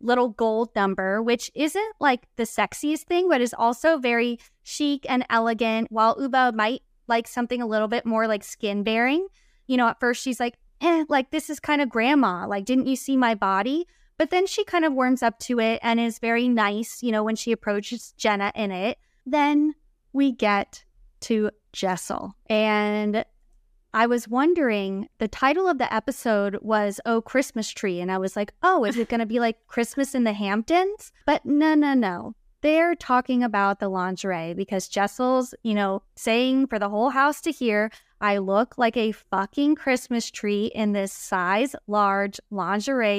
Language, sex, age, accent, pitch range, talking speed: English, female, 20-39, American, 210-265 Hz, 185 wpm